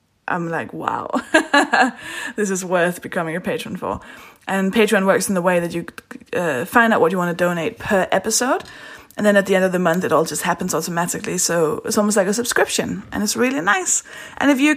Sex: female